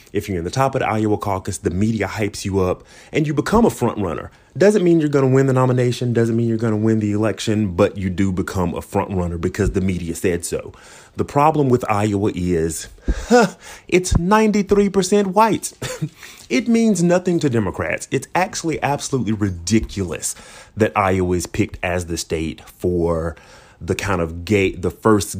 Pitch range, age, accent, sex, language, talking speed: 90-110 Hz, 30-49, American, male, English, 185 wpm